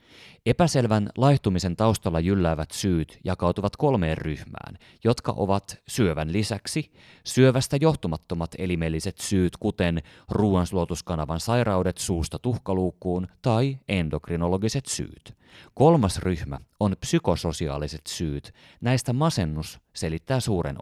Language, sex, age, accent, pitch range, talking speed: Finnish, male, 30-49, native, 90-125 Hz, 95 wpm